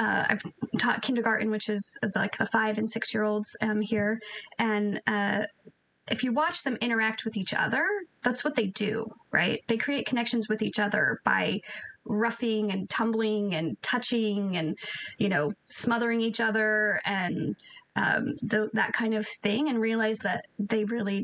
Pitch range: 210-230 Hz